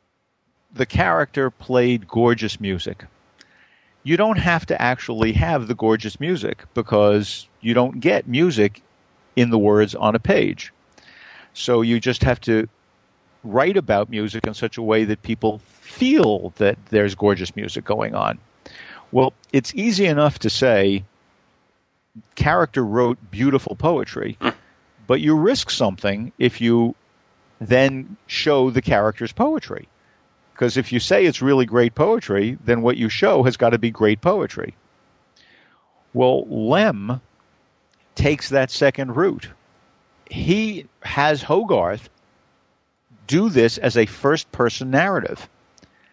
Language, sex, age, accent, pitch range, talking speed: English, male, 50-69, American, 110-140 Hz, 130 wpm